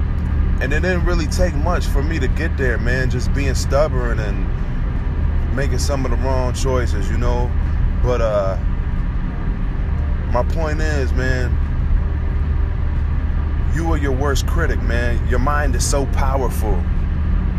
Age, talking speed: 20-39, 140 wpm